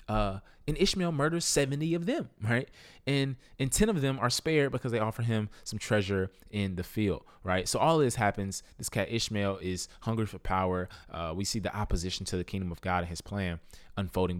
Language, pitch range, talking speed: English, 95-125 Hz, 210 wpm